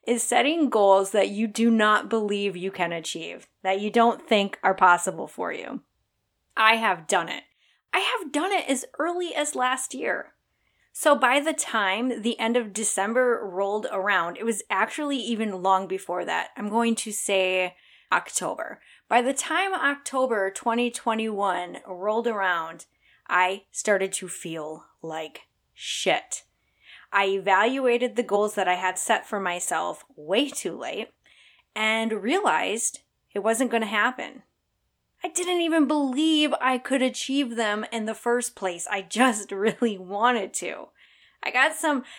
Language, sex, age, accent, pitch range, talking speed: English, female, 20-39, American, 195-260 Hz, 150 wpm